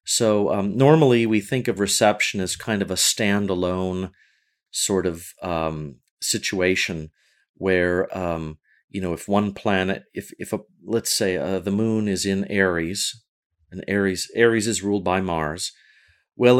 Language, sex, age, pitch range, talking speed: English, male, 40-59, 95-125 Hz, 150 wpm